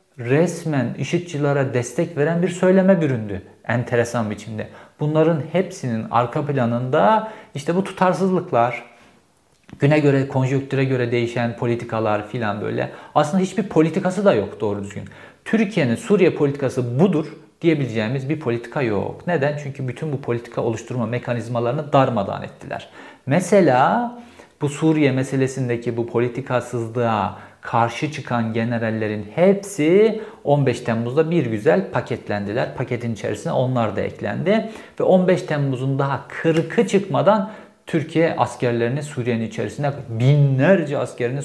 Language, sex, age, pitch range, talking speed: Turkish, male, 50-69, 120-165 Hz, 115 wpm